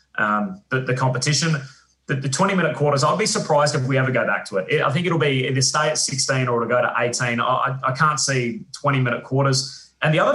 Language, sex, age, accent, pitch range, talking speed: English, male, 20-39, Australian, 125-145 Hz, 230 wpm